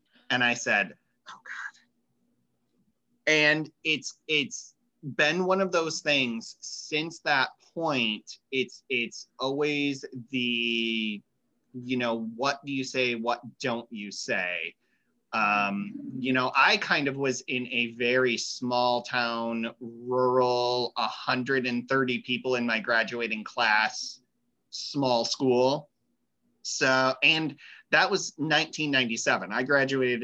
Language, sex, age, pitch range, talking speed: English, male, 30-49, 115-135 Hz, 115 wpm